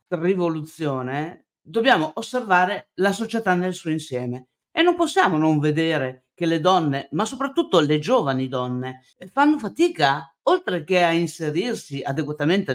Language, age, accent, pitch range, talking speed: Italian, 50-69, native, 145-210 Hz, 130 wpm